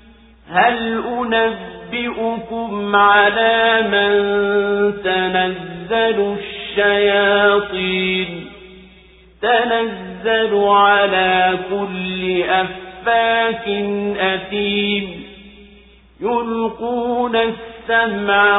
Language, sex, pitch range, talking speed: Swahili, male, 185-225 Hz, 40 wpm